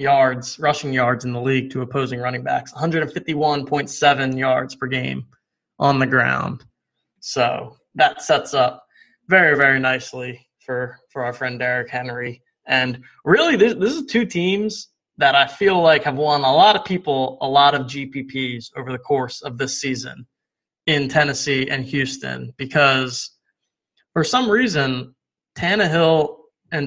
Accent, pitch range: American, 125-150 Hz